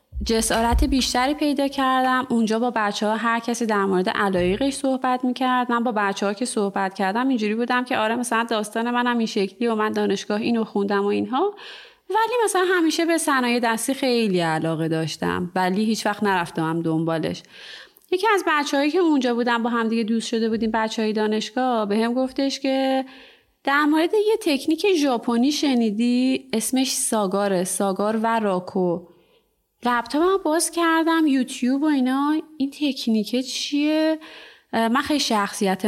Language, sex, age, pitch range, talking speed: Persian, female, 30-49, 200-265 Hz, 160 wpm